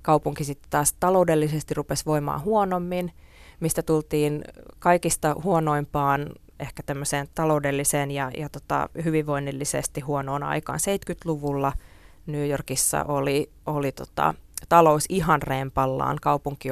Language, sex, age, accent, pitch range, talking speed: Finnish, female, 20-39, native, 140-165 Hz, 100 wpm